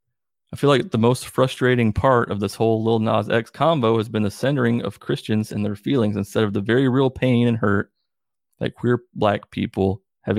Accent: American